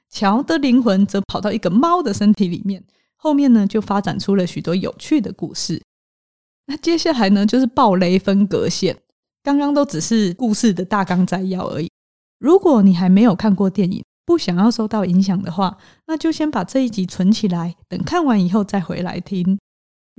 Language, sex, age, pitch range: Chinese, female, 20-39, 185-240 Hz